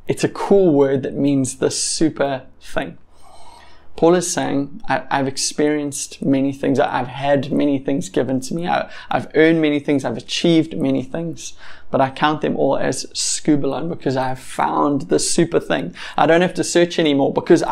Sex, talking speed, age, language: male, 180 wpm, 20-39, English